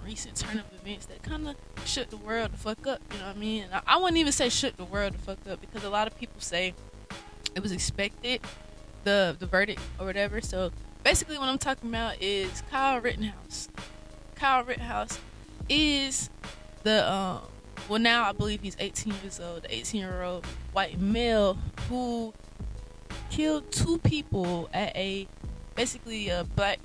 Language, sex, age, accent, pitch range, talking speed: English, female, 20-39, American, 170-220 Hz, 175 wpm